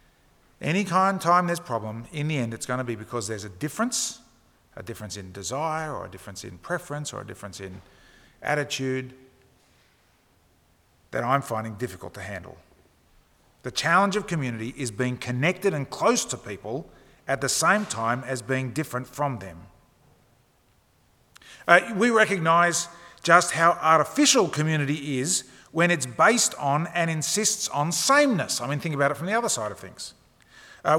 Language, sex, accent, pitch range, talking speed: English, male, Australian, 130-185 Hz, 165 wpm